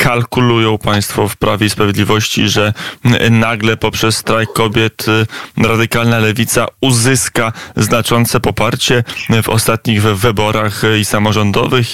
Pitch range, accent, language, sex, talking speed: 110-120 Hz, native, Polish, male, 105 wpm